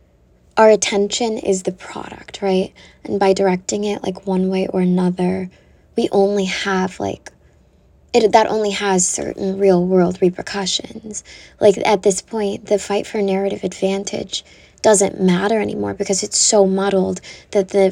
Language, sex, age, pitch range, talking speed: English, female, 10-29, 190-205 Hz, 150 wpm